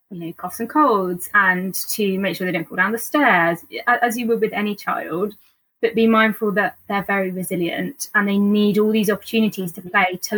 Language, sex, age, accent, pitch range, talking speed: English, female, 10-29, British, 185-215 Hz, 215 wpm